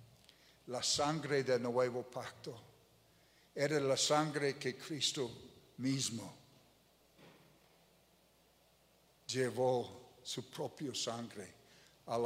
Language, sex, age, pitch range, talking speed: Spanish, male, 60-79, 135-165 Hz, 80 wpm